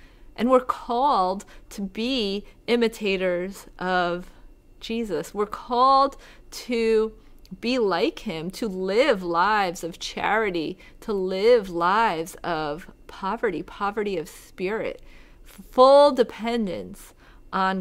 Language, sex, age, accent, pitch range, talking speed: English, female, 30-49, American, 190-235 Hz, 100 wpm